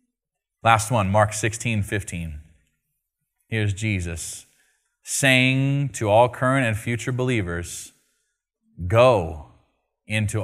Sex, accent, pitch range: male, American, 115-175 Hz